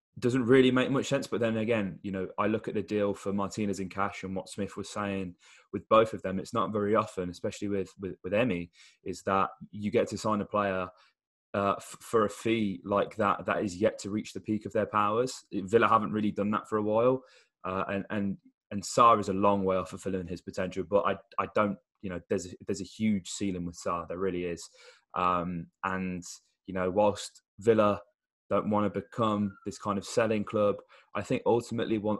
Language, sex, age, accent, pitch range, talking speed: English, male, 20-39, British, 95-105 Hz, 220 wpm